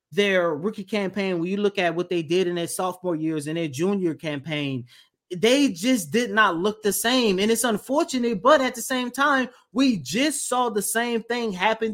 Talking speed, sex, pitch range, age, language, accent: 200 wpm, male, 170-230 Hz, 20-39, English, American